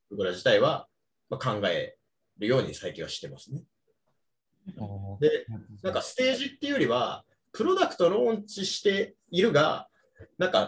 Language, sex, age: Japanese, male, 30-49